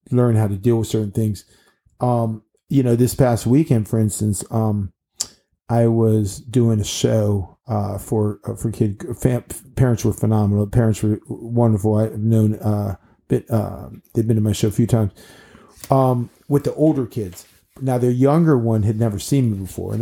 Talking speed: 185 wpm